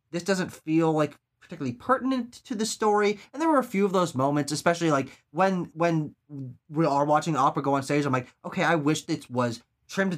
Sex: male